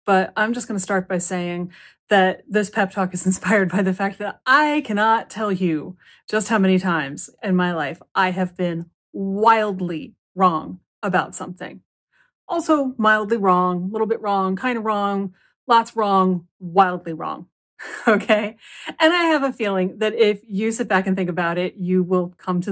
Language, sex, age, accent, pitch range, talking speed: English, female, 30-49, American, 180-230 Hz, 180 wpm